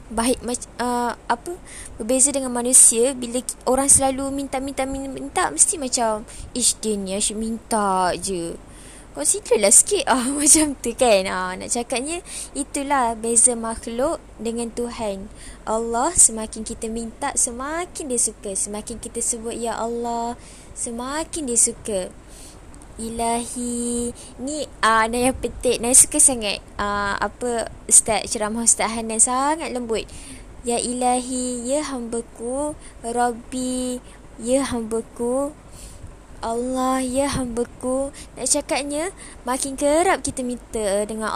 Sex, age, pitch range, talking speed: female, 20-39, 225-265 Hz, 120 wpm